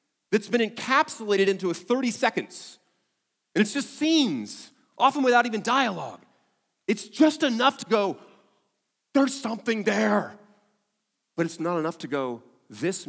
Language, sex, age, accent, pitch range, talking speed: English, male, 40-59, American, 165-245 Hz, 140 wpm